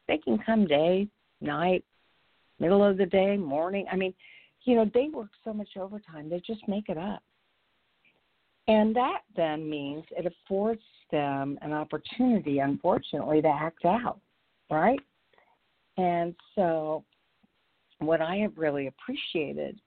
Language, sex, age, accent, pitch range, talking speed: English, female, 50-69, American, 165-230 Hz, 135 wpm